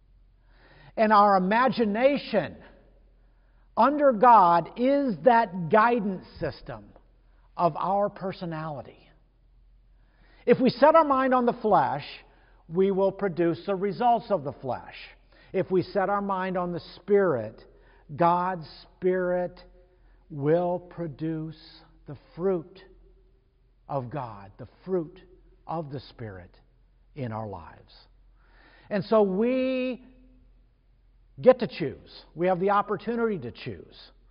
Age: 50-69